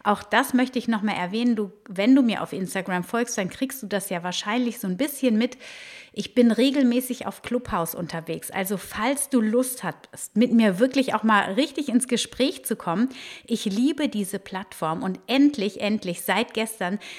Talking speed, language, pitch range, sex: 190 wpm, German, 205-255 Hz, female